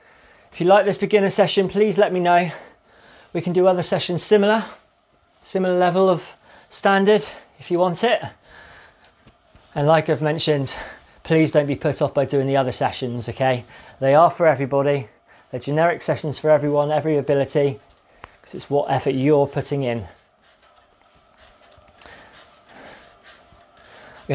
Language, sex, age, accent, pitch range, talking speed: English, male, 20-39, British, 145-185 Hz, 145 wpm